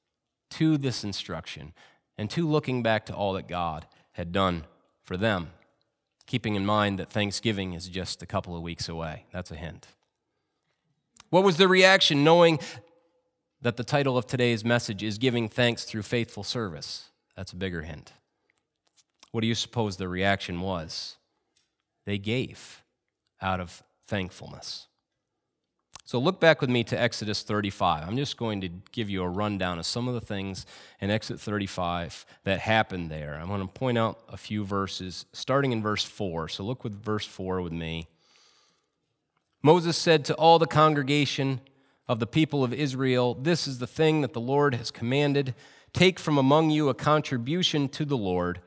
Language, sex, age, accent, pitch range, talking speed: English, male, 30-49, American, 95-140 Hz, 170 wpm